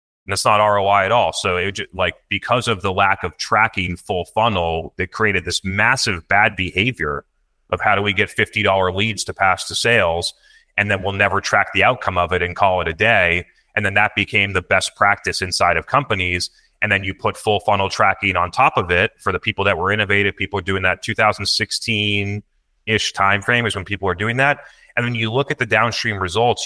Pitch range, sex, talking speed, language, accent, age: 95-110 Hz, male, 215 wpm, Portuguese, American, 30-49